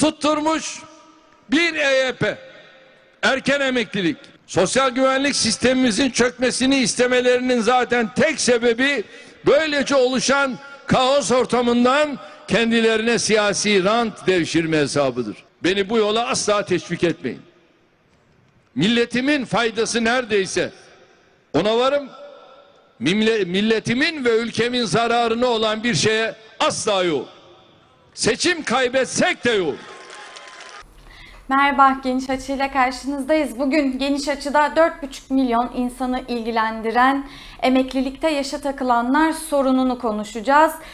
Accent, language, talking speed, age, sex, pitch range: native, Turkish, 90 wpm, 60-79, male, 235-285 Hz